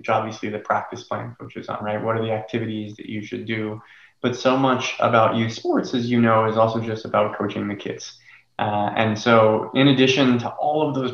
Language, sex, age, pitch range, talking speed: English, male, 20-39, 110-125 Hz, 215 wpm